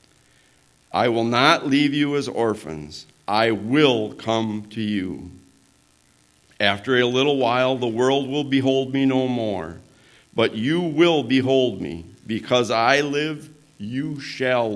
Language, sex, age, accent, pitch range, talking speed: English, male, 50-69, American, 105-145 Hz, 135 wpm